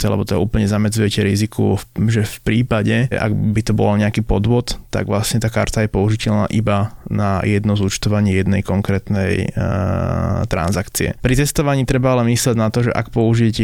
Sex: male